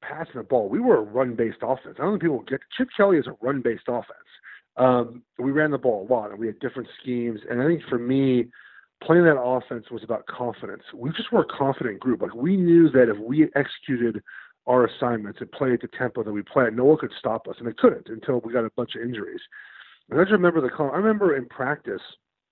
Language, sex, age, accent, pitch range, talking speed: English, male, 40-59, American, 115-140 Hz, 240 wpm